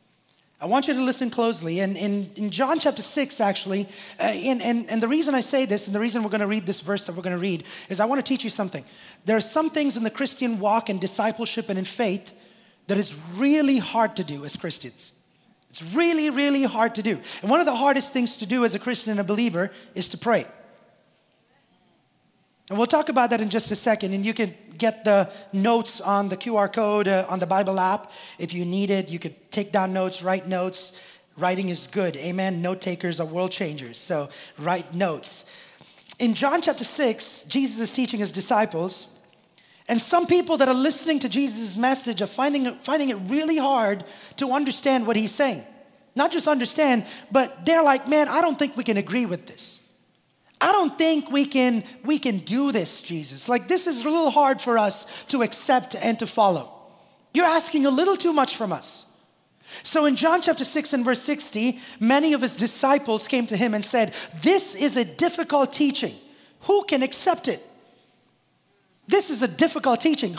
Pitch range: 200-275 Hz